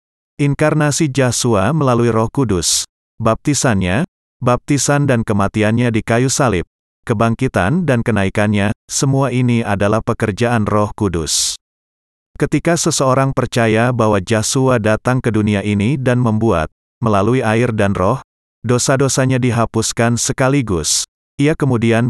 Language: Indonesian